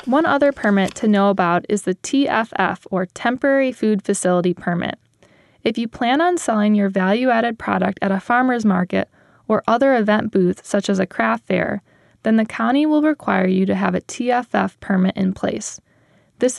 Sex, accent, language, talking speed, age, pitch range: female, American, English, 175 wpm, 10-29, 185-235 Hz